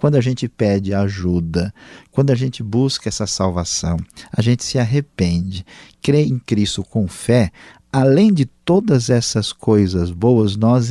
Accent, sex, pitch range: Brazilian, male, 95-120 Hz